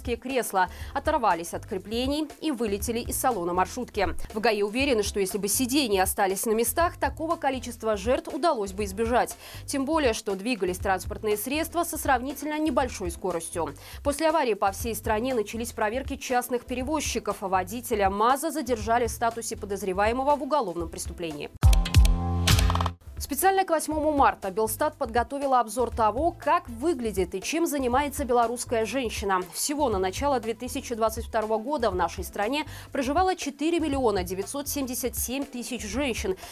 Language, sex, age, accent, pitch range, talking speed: Russian, female, 20-39, native, 210-290 Hz, 135 wpm